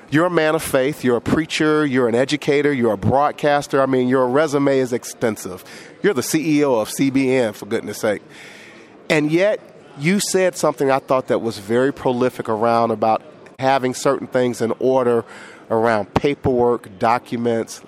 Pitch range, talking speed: 120-155 Hz, 165 wpm